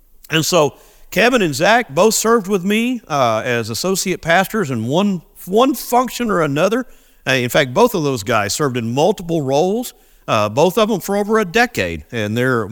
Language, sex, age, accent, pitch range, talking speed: English, male, 50-69, American, 125-200 Hz, 190 wpm